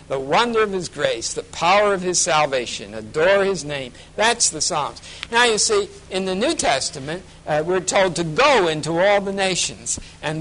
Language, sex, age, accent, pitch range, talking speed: English, male, 60-79, American, 150-200 Hz, 190 wpm